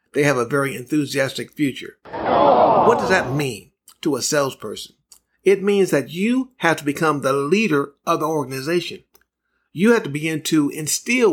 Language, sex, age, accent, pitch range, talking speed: English, male, 50-69, American, 145-185 Hz, 165 wpm